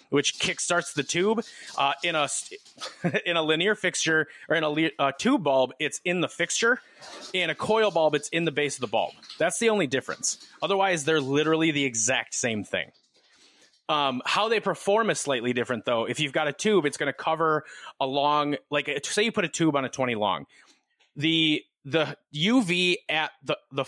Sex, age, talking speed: male, 30-49, 195 wpm